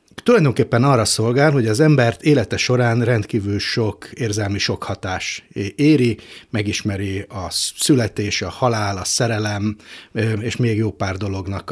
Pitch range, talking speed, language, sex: 105-135 Hz, 135 wpm, Hungarian, male